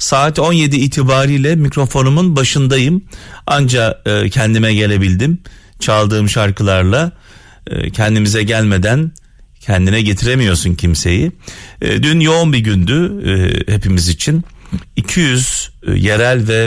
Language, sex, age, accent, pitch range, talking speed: Turkish, male, 40-59, native, 95-135 Hz, 85 wpm